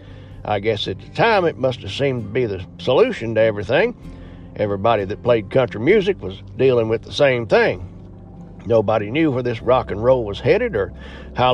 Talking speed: 190 wpm